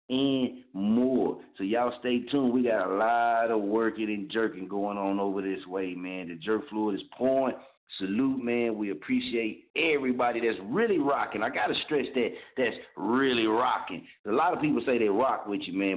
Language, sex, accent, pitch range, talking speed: English, male, American, 105-130 Hz, 190 wpm